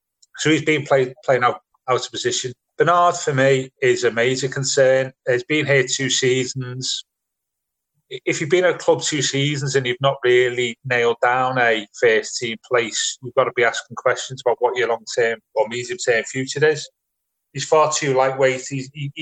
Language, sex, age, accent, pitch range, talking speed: English, male, 30-49, British, 125-155 Hz, 185 wpm